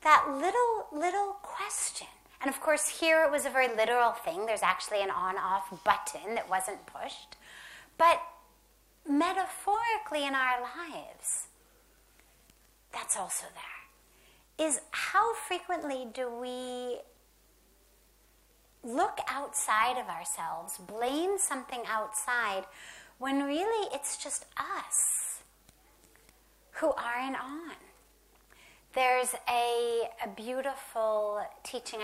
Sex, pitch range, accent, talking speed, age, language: female, 225-325 Hz, American, 105 wpm, 30-49, English